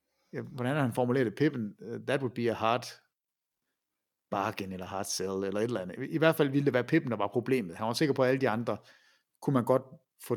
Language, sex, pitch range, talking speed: Danish, male, 115-155 Hz, 230 wpm